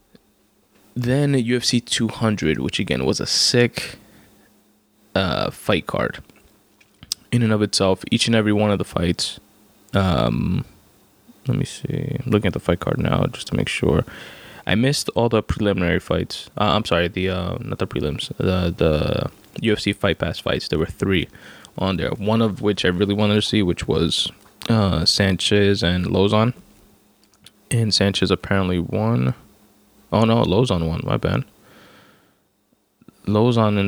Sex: male